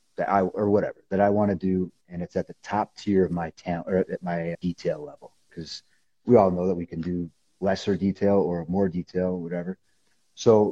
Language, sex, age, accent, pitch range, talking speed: English, male, 30-49, American, 85-100 Hz, 225 wpm